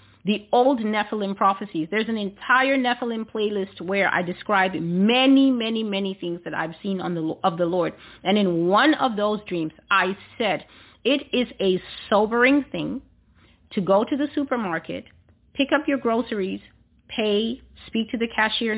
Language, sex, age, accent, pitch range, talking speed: English, female, 40-59, American, 195-250 Hz, 165 wpm